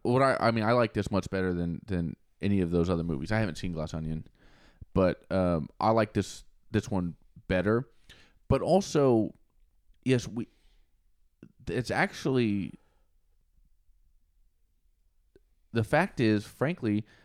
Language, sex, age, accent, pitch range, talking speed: English, male, 20-39, American, 90-125 Hz, 135 wpm